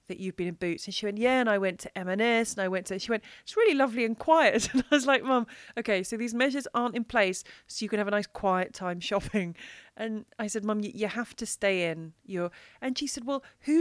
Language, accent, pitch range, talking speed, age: English, British, 195-255 Hz, 265 wpm, 30-49